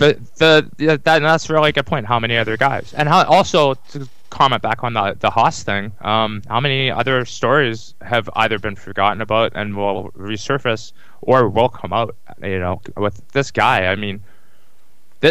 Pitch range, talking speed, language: 100-135 Hz, 190 wpm, English